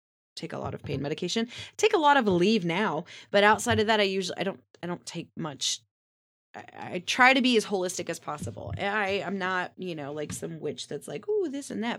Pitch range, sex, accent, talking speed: 180-240 Hz, female, American, 235 wpm